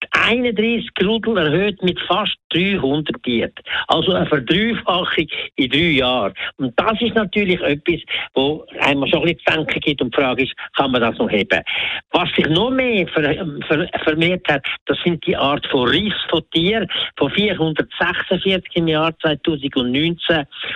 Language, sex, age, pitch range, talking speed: German, male, 60-79, 145-185 Hz, 145 wpm